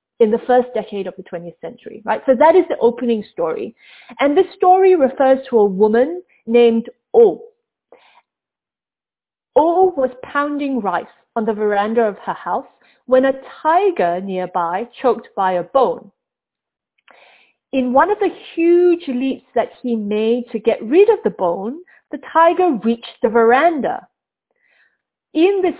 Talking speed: 150 wpm